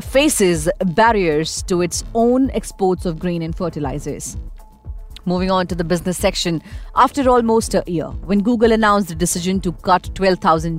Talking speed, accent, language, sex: 155 wpm, Indian, English, female